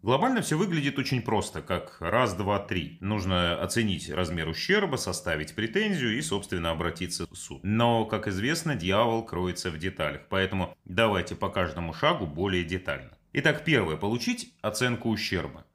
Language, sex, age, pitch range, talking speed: Russian, male, 30-49, 90-115 Hz, 150 wpm